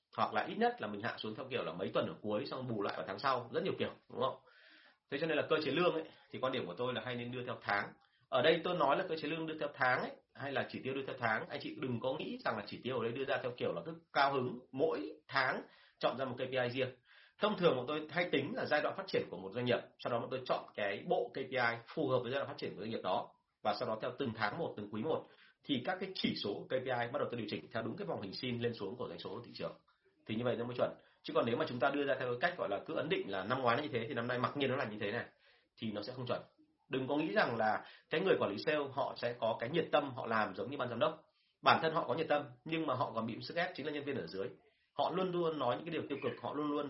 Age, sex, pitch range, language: 30-49, male, 115-150 Hz, Vietnamese